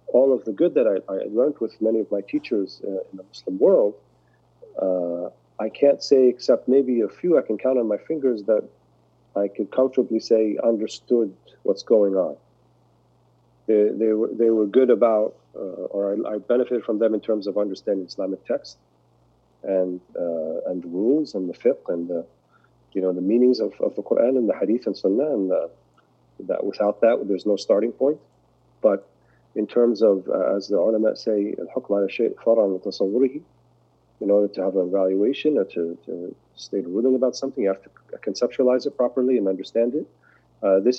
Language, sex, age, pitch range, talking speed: English, male, 40-59, 95-115 Hz, 185 wpm